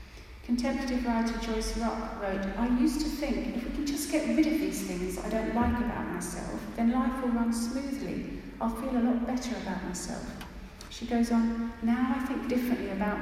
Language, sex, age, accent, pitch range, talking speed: English, female, 40-59, British, 210-245 Hz, 195 wpm